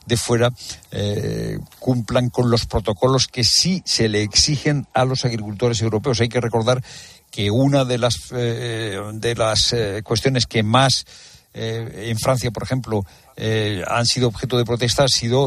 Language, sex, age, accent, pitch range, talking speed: Spanish, male, 60-79, Spanish, 105-125 Hz, 165 wpm